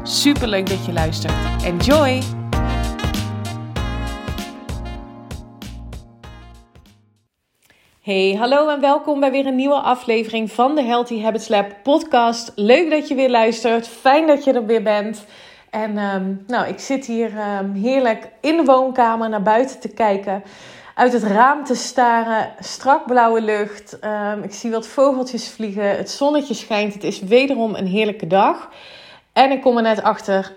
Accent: Dutch